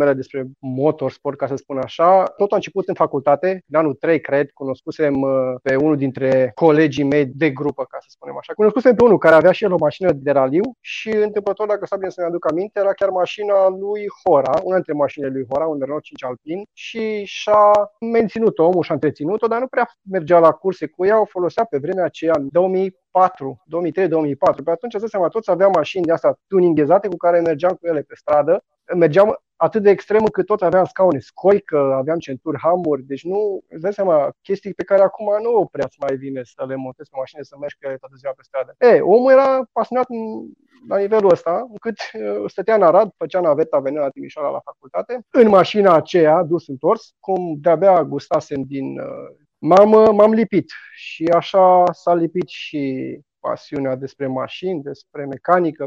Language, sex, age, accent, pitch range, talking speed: Romanian, male, 30-49, native, 145-205 Hz, 190 wpm